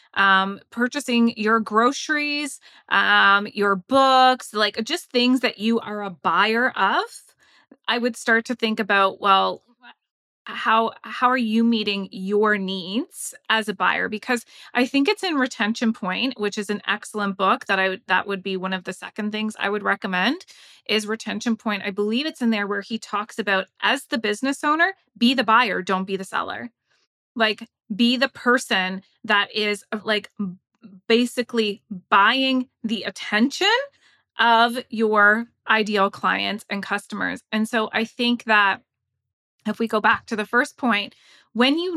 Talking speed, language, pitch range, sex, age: 165 wpm, English, 205-245 Hz, female, 20-39